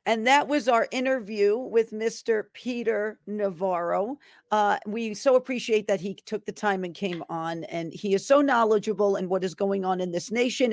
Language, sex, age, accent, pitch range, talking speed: English, female, 50-69, American, 190-230 Hz, 190 wpm